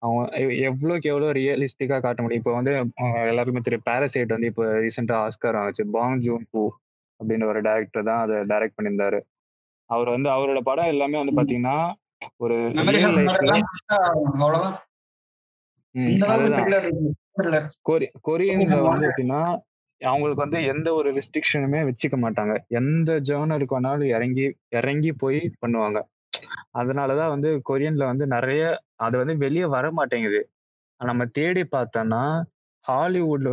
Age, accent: 20-39, native